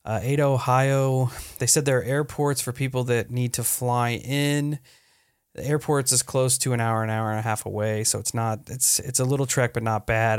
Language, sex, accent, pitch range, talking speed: English, male, American, 115-135 Hz, 225 wpm